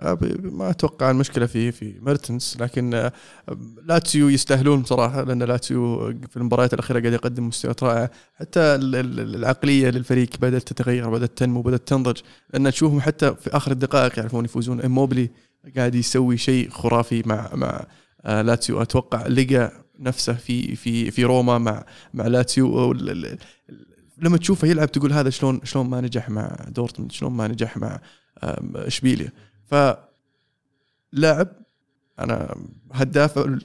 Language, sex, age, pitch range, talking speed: Arabic, male, 20-39, 120-140 Hz, 130 wpm